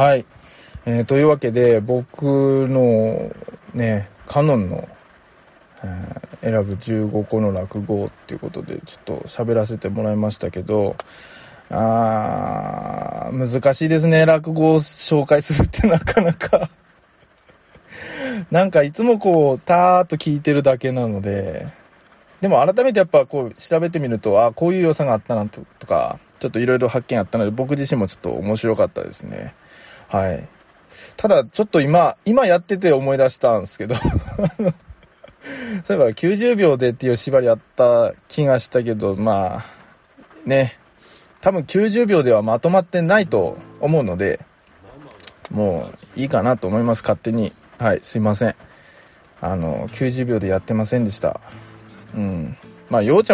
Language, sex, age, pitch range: Japanese, male, 20-39, 110-170 Hz